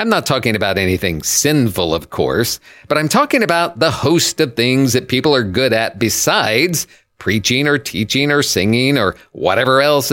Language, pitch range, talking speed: English, 110-150 Hz, 180 wpm